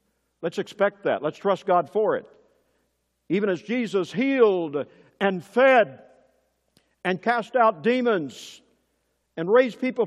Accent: American